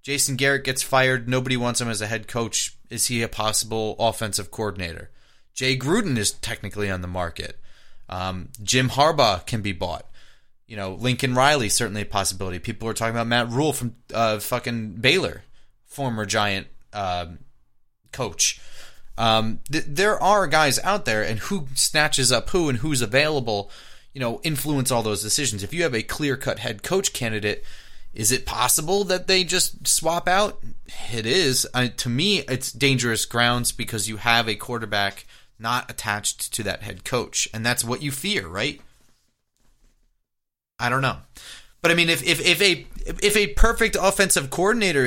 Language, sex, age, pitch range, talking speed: English, male, 20-39, 110-155 Hz, 170 wpm